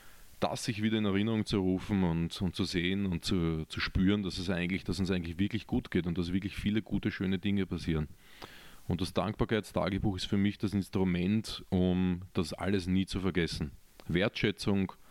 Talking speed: 185 wpm